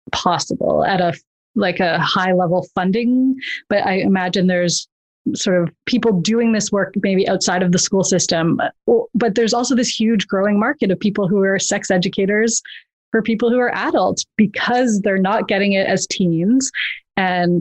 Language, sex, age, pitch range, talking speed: English, female, 30-49, 185-230 Hz, 175 wpm